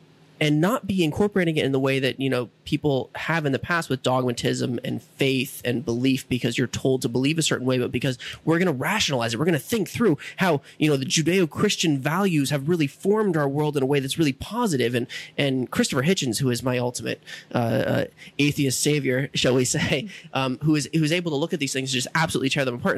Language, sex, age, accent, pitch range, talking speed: English, male, 30-49, American, 135-175 Hz, 240 wpm